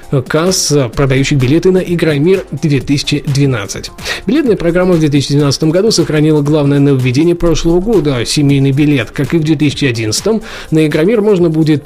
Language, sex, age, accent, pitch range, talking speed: Russian, male, 20-39, native, 140-175 Hz, 135 wpm